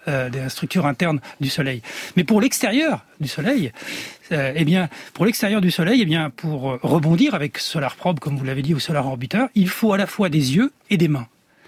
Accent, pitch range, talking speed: French, 150-210 Hz, 225 wpm